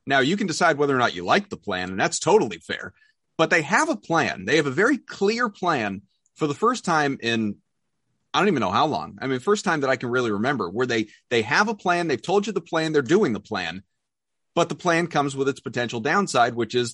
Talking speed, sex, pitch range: 250 wpm, male, 125-170 Hz